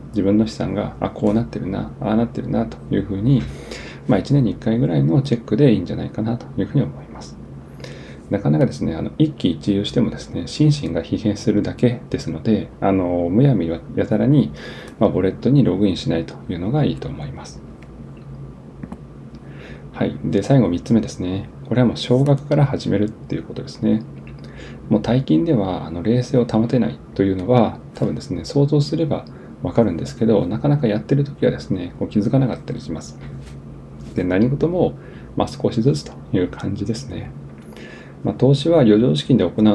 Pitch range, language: 85-125 Hz, Japanese